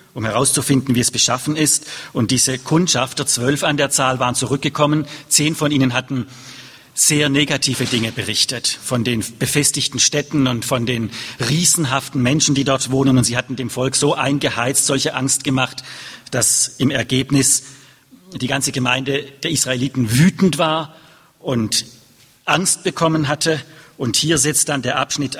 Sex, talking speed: male, 155 wpm